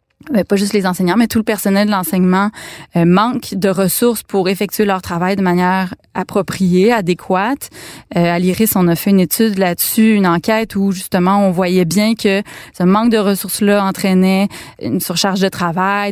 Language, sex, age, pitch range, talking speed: French, female, 20-39, 180-215 Hz, 180 wpm